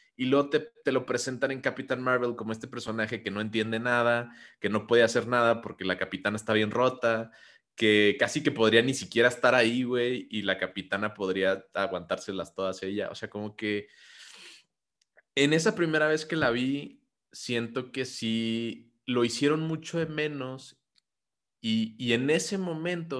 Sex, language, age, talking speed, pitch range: male, Spanish, 20-39, 180 wpm, 110-135 Hz